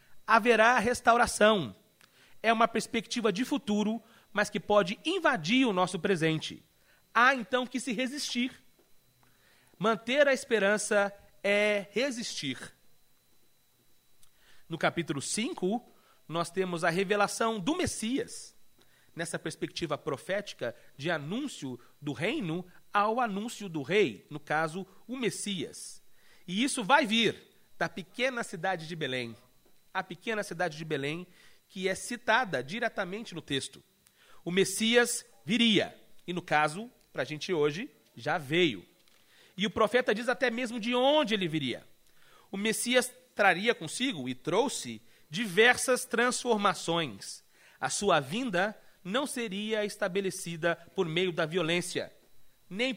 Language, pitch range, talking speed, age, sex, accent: Portuguese, 175-240 Hz, 125 wpm, 40-59, male, Brazilian